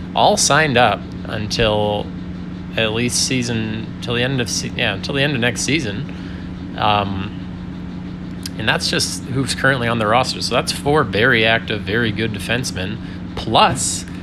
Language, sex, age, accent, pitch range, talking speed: English, male, 20-39, American, 90-115 Hz, 155 wpm